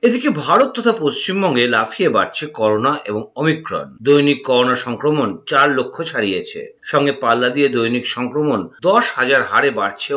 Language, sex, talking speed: Bengali, male, 110 wpm